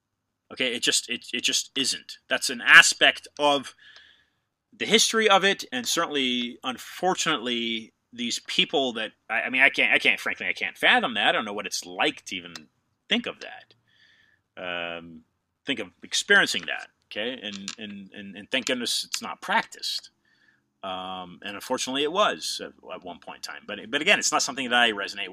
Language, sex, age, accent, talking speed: English, male, 30-49, American, 185 wpm